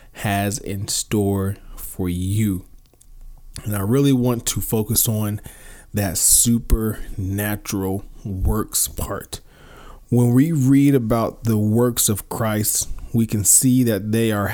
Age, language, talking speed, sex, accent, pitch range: 20-39, English, 130 wpm, male, American, 105-120 Hz